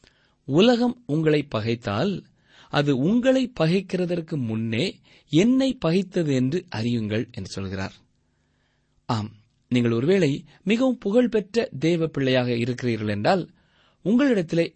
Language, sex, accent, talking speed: Tamil, male, native, 95 wpm